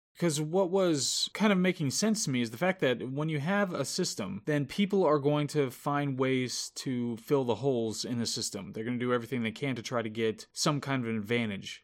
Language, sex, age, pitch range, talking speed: English, male, 20-39, 120-155 Hz, 245 wpm